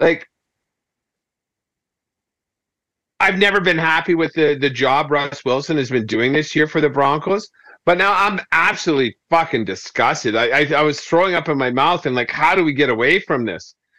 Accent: American